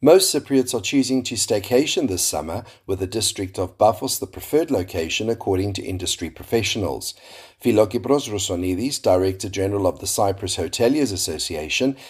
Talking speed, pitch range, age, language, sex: 145 wpm, 95-130 Hz, 40-59, English, male